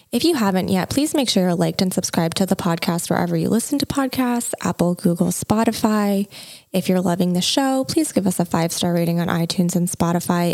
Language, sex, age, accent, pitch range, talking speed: English, female, 20-39, American, 175-235 Hz, 210 wpm